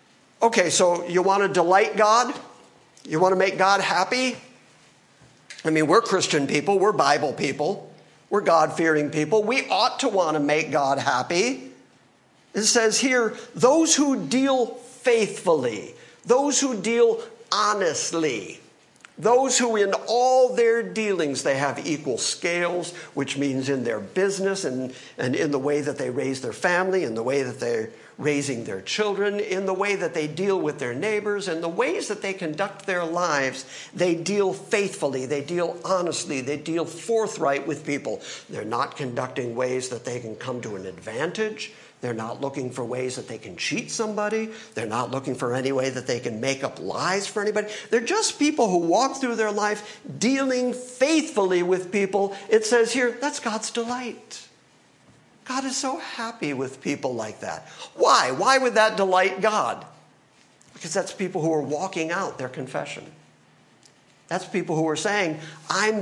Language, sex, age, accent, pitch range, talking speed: English, male, 50-69, American, 155-225 Hz, 170 wpm